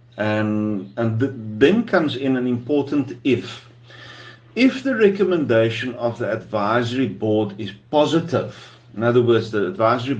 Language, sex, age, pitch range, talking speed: English, male, 50-69, 105-135 Hz, 130 wpm